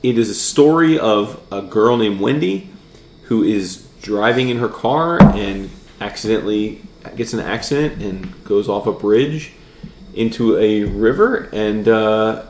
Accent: American